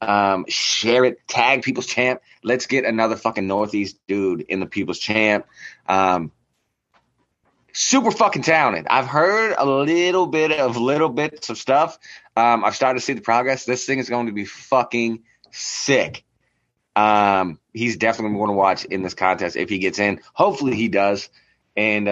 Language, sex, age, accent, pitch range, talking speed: English, male, 20-39, American, 95-120 Hz, 170 wpm